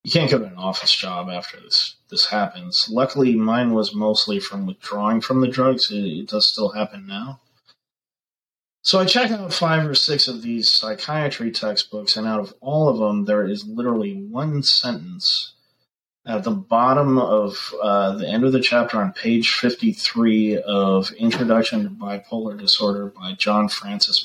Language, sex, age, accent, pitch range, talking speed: English, male, 30-49, American, 105-145 Hz, 170 wpm